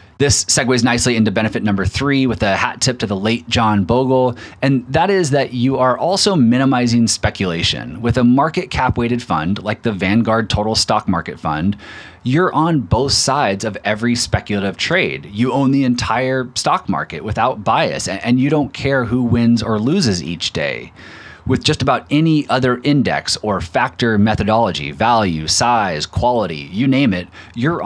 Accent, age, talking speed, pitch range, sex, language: American, 30-49, 170 wpm, 105-130 Hz, male, English